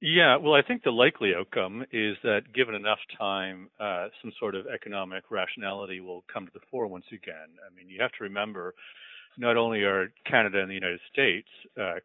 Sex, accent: male, American